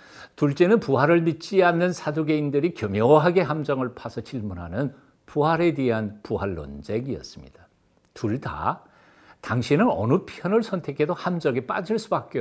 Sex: male